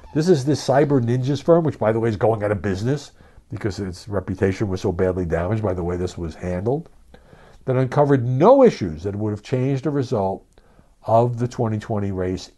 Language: English